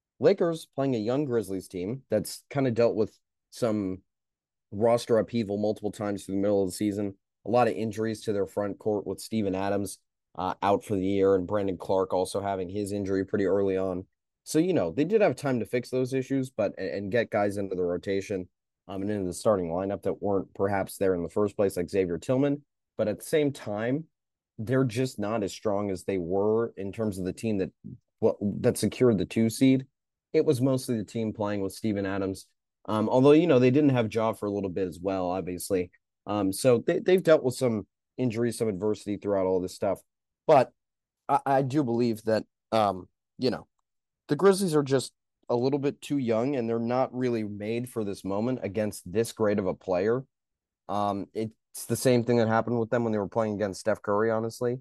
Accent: American